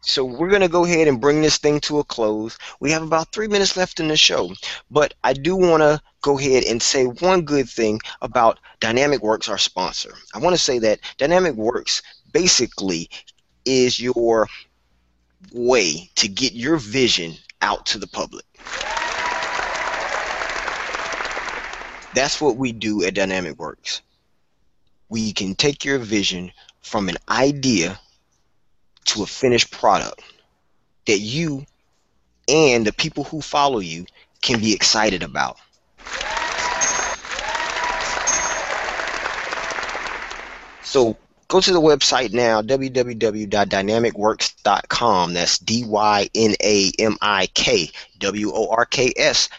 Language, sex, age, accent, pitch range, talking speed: English, male, 20-39, American, 105-150 Hz, 120 wpm